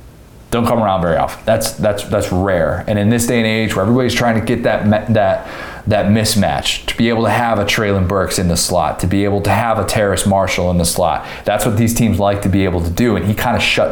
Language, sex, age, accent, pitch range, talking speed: English, male, 20-39, American, 90-115 Hz, 265 wpm